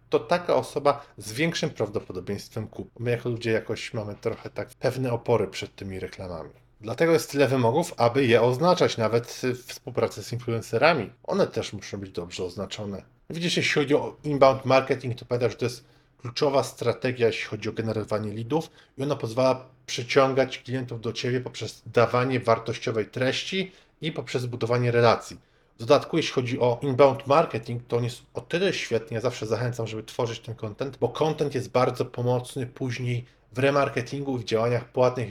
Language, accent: Polish, native